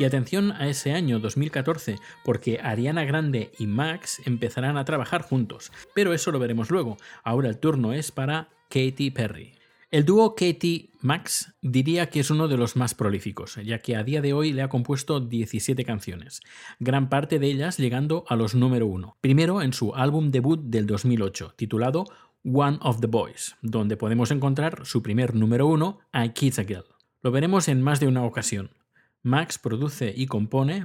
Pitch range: 115-155 Hz